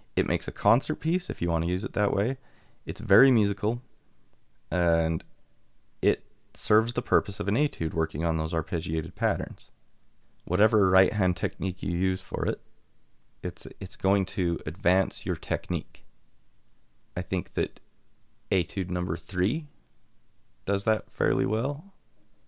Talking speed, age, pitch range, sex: 145 wpm, 30-49, 85-110 Hz, male